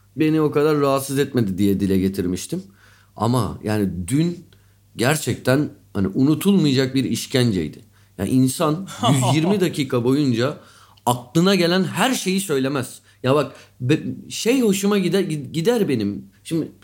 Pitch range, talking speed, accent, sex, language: 110-180 Hz, 125 wpm, native, male, Turkish